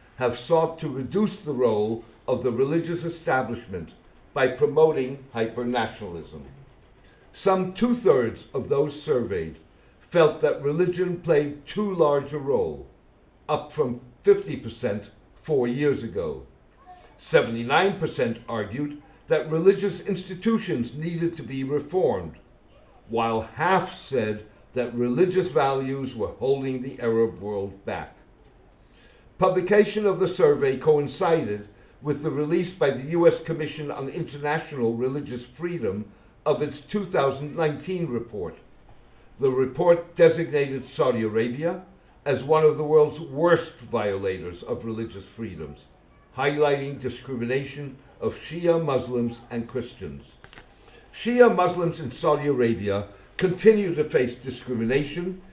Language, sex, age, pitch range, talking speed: English, male, 60-79, 120-170 Hz, 110 wpm